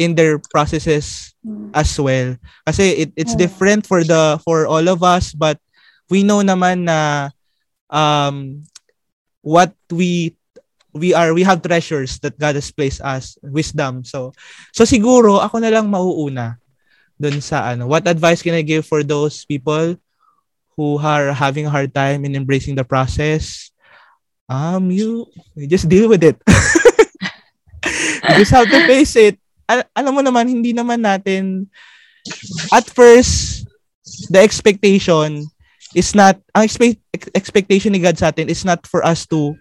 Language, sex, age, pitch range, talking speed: Filipino, male, 20-39, 150-190 Hz, 150 wpm